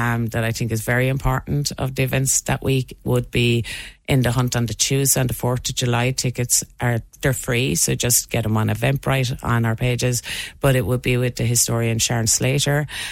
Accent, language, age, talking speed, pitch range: Irish, English, 30-49, 215 wpm, 115-135 Hz